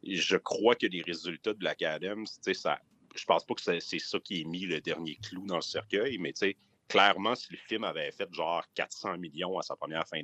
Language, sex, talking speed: French, male, 235 wpm